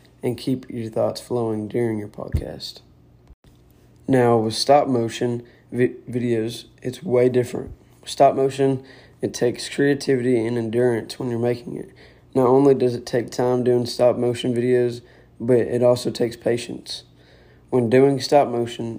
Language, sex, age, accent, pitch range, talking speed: English, male, 20-39, American, 110-125 Hz, 135 wpm